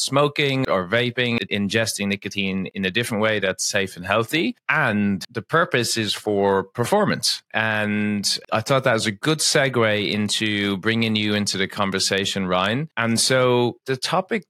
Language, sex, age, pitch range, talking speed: English, male, 30-49, 95-120 Hz, 155 wpm